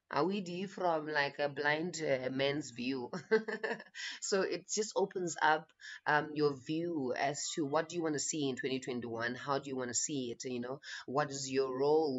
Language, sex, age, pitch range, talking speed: English, female, 30-49, 135-175 Hz, 185 wpm